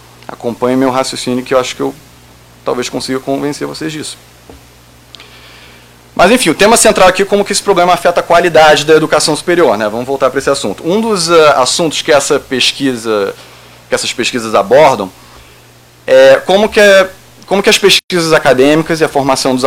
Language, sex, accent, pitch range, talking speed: Portuguese, male, Brazilian, 120-165 Hz, 185 wpm